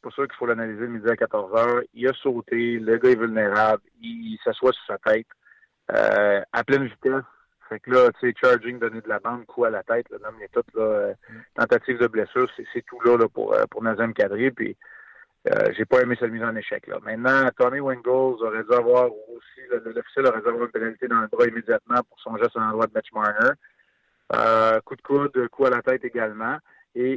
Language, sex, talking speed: French, male, 235 wpm